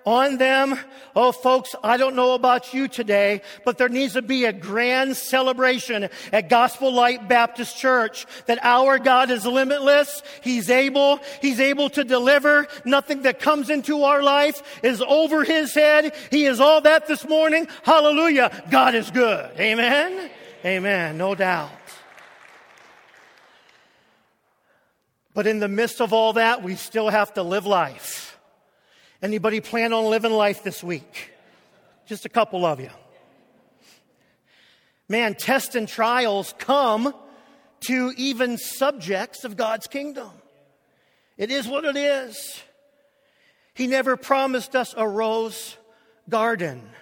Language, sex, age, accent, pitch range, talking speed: English, male, 40-59, American, 220-275 Hz, 135 wpm